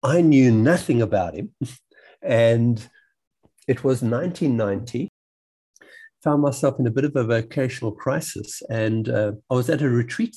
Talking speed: 150 wpm